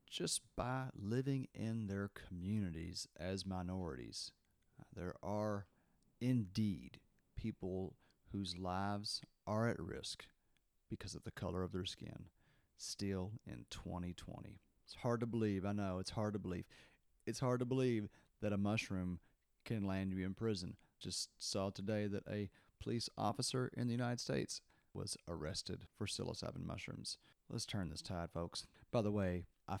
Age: 40-59